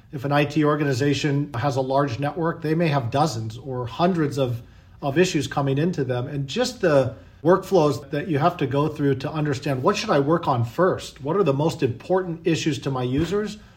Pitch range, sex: 135-160 Hz, male